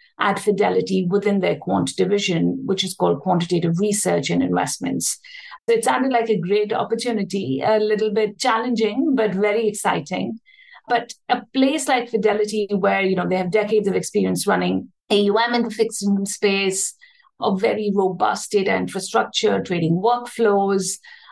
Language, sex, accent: English, female, Indian